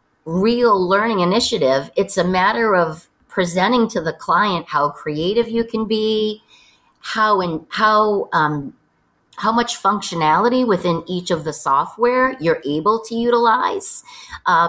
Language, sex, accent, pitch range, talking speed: English, female, American, 160-220 Hz, 135 wpm